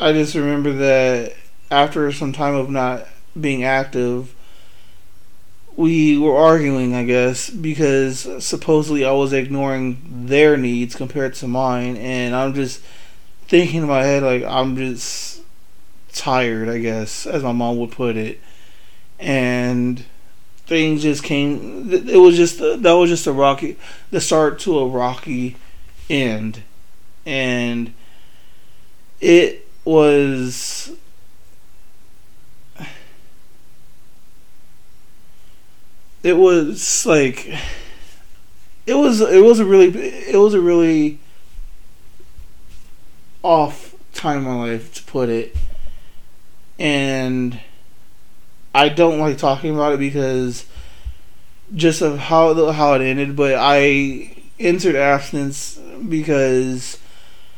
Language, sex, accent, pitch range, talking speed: English, male, American, 120-150 Hz, 110 wpm